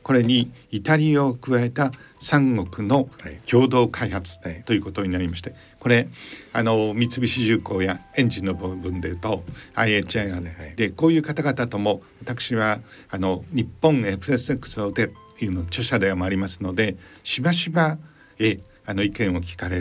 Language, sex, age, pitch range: Japanese, male, 50-69, 95-135 Hz